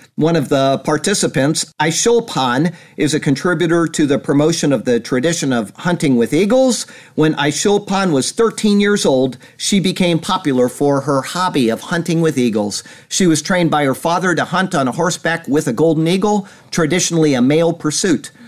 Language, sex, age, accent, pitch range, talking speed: English, male, 50-69, American, 125-165 Hz, 170 wpm